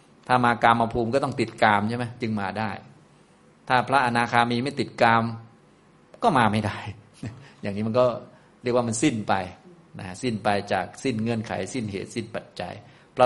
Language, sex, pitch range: Thai, male, 105-120 Hz